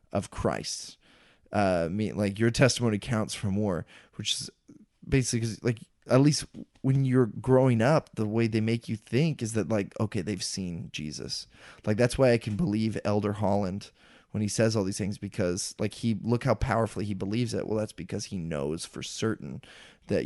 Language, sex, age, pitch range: English, male, 20-39, 100-120 Hz